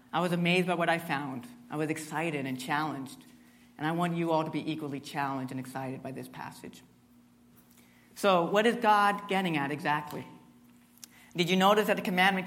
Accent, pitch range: American, 120-180 Hz